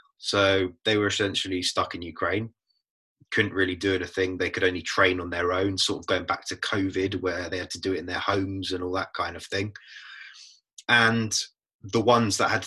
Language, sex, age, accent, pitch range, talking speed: English, male, 20-39, British, 95-110 Hz, 210 wpm